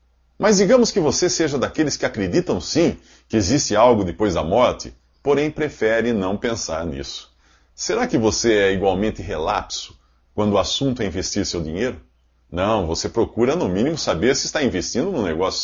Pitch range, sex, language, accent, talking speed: 75-120 Hz, male, English, Brazilian, 170 wpm